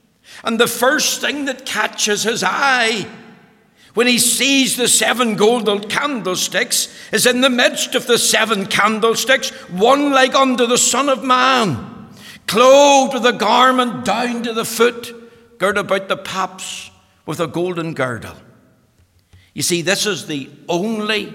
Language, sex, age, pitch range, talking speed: English, male, 60-79, 145-225 Hz, 145 wpm